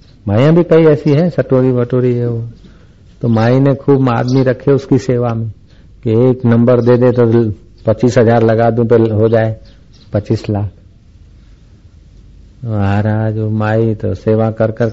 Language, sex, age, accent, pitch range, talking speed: Hindi, male, 60-79, native, 100-120 Hz, 155 wpm